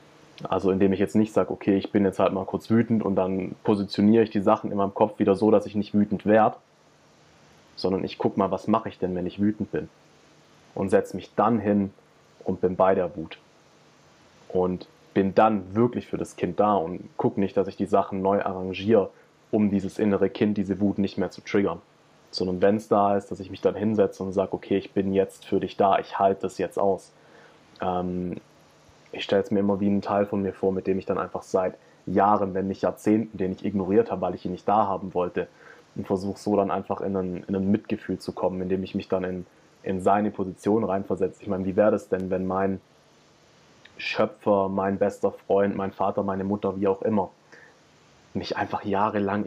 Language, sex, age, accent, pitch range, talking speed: German, male, 20-39, German, 95-105 Hz, 215 wpm